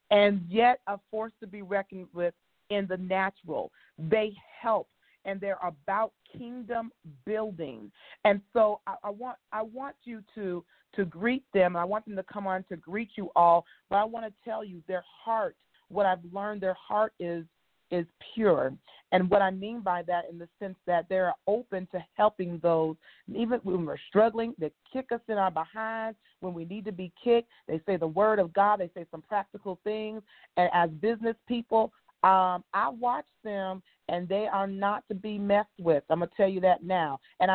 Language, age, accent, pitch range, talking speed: English, 40-59, American, 180-220 Hz, 200 wpm